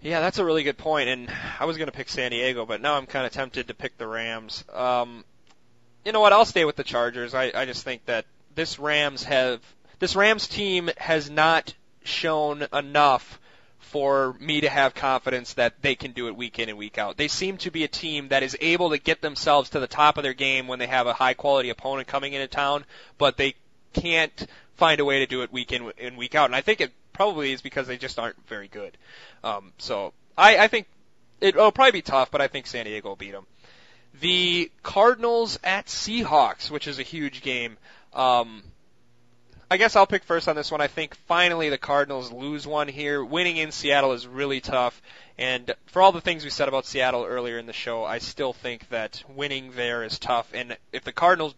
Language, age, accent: English, 20-39, American